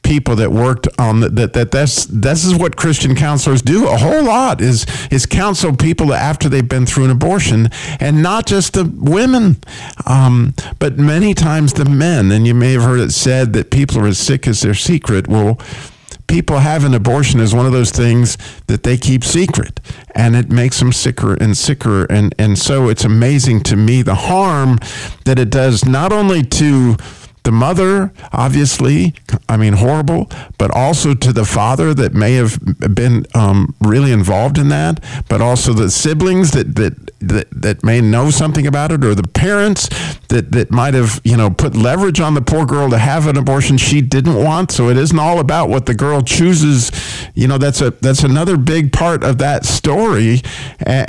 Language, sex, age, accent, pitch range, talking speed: English, male, 50-69, American, 115-150 Hz, 190 wpm